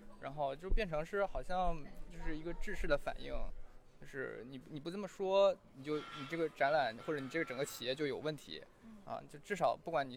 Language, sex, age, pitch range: Chinese, male, 20-39, 140-190 Hz